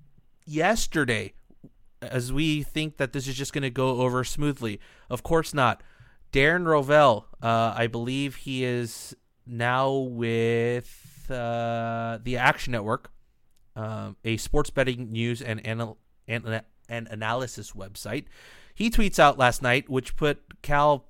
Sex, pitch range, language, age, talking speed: male, 115-140 Hz, English, 30-49, 130 wpm